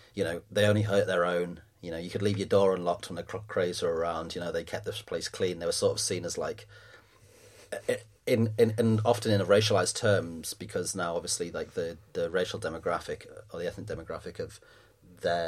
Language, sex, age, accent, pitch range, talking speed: English, male, 30-49, British, 100-125 Hz, 215 wpm